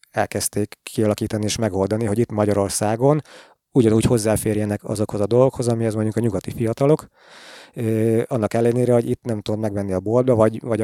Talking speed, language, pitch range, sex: 155 wpm, Hungarian, 105-120 Hz, male